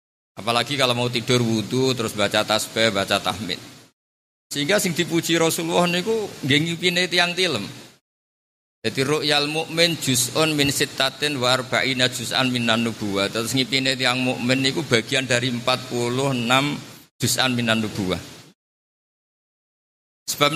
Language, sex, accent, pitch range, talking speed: Indonesian, male, native, 105-135 Hz, 130 wpm